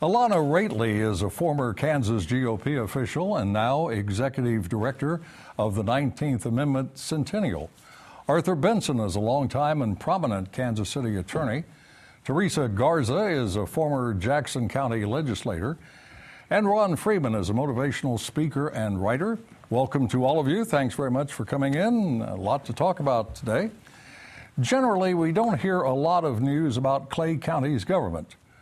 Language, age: English, 60-79